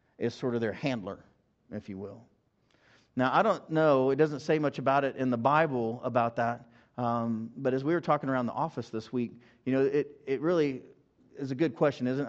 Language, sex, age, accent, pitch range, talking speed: English, male, 40-59, American, 120-140 Hz, 215 wpm